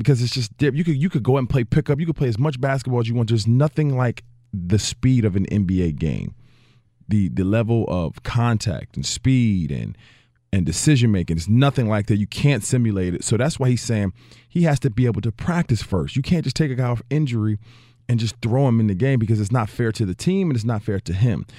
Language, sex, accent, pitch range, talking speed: English, male, American, 105-135 Hz, 245 wpm